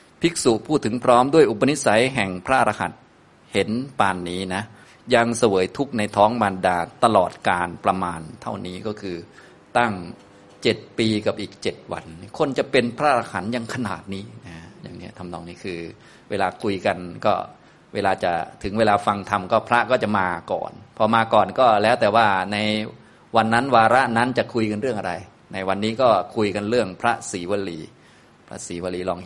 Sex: male